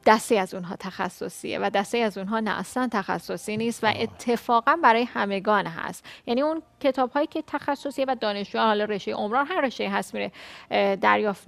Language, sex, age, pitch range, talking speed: Persian, female, 10-29, 210-265 Hz, 180 wpm